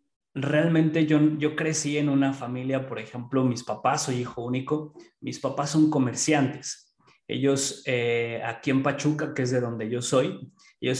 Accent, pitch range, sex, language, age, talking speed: Mexican, 125-150 Hz, male, Spanish, 20-39, 165 wpm